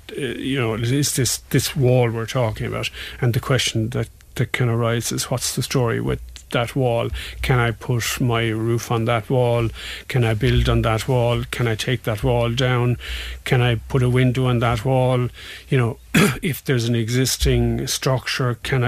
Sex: male